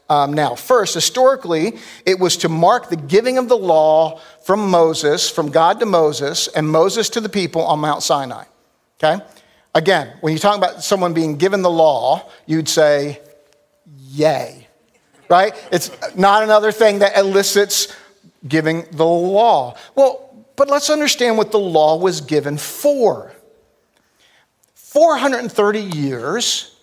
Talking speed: 140 wpm